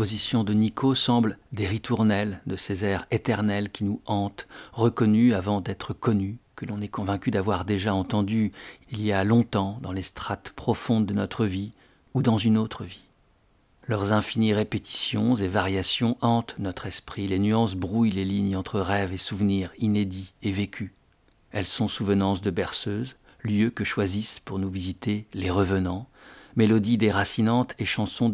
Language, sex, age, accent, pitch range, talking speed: French, male, 50-69, French, 95-115 Hz, 165 wpm